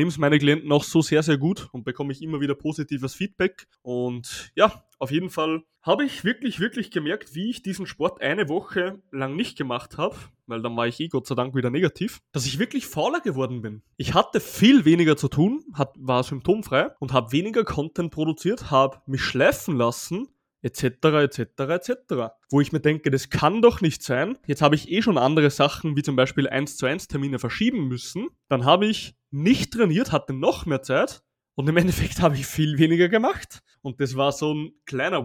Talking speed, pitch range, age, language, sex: 205 wpm, 135-170 Hz, 20-39, German, male